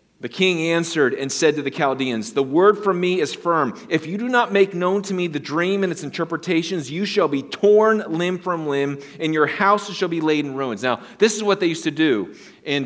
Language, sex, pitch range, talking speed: English, male, 145-195 Hz, 240 wpm